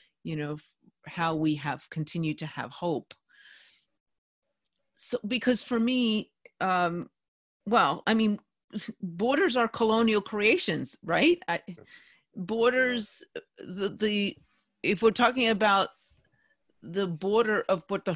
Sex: female